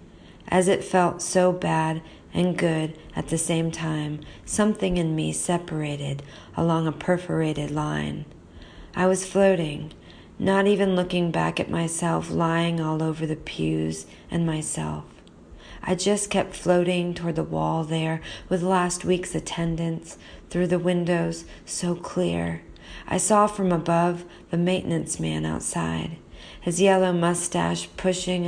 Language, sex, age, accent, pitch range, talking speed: English, female, 40-59, American, 145-180 Hz, 135 wpm